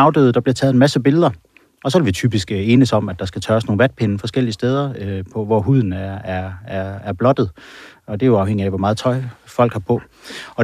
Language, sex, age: Danish, male, 30-49